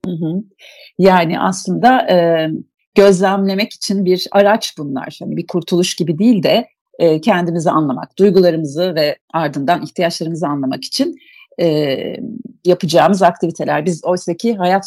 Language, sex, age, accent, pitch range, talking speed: Turkish, female, 40-59, native, 175-245 Hz, 125 wpm